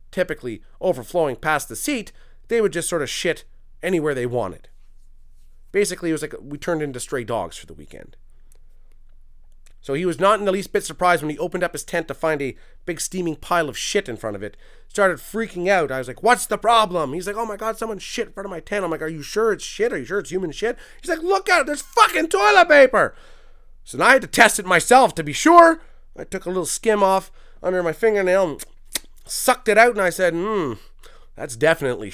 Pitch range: 130-200 Hz